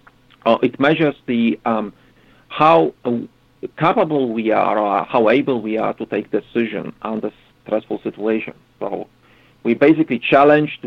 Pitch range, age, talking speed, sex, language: 110-130 Hz, 50-69, 145 wpm, male, English